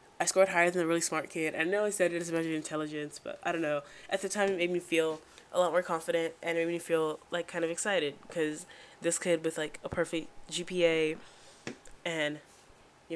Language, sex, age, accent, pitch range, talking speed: English, female, 10-29, American, 160-185 Hz, 235 wpm